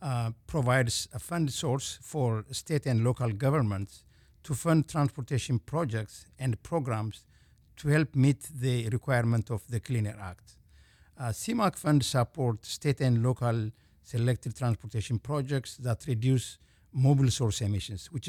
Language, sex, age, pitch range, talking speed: English, male, 60-79, 110-135 Hz, 140 wpm